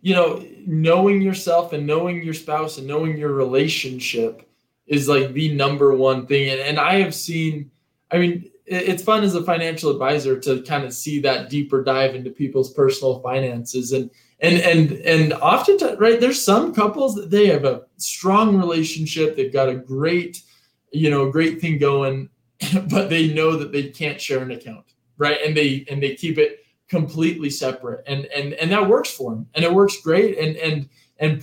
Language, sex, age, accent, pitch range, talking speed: English, male, 20-39, American, 140-175 Hz, 185 wpm